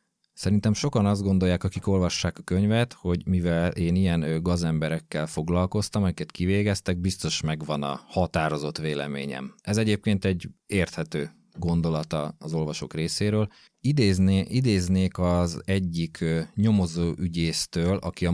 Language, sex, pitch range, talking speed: Hungarian, male, 80-95 Hz, 120 wpm